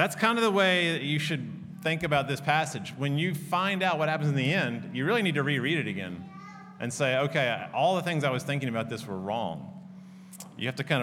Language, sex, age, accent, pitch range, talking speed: English, male, 30-49, American, 135-175 Hz, 245 wpm